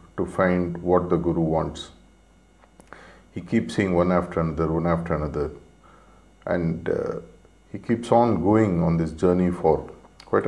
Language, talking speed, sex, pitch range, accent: English, 150 wpm, male, 85-95 Hz, Indian